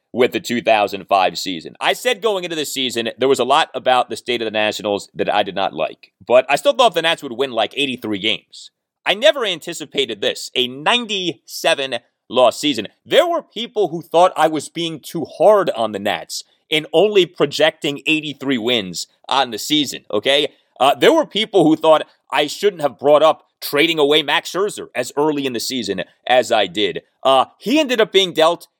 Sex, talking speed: male, 195 wpm